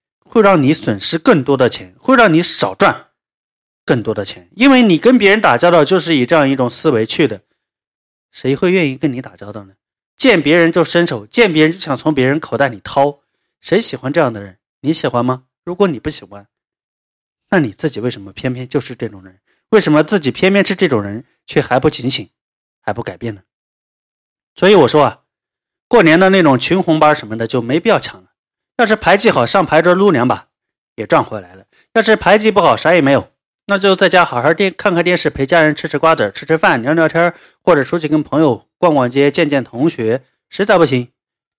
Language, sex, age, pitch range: Chinese, male, 30-49, 120-170 Hz